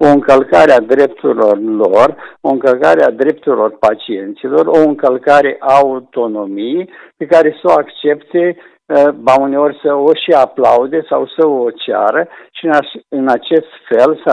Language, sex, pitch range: Romanian, male, 130-180 Hz